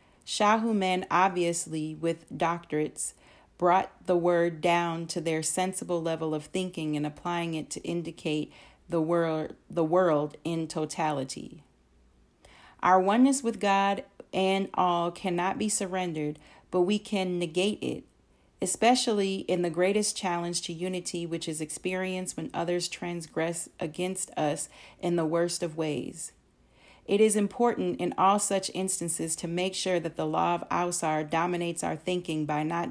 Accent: American